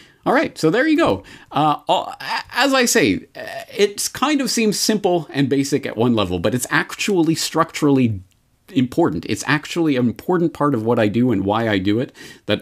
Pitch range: 105-150 Hz